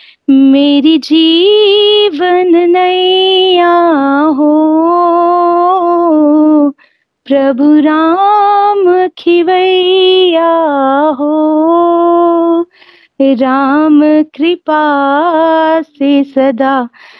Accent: native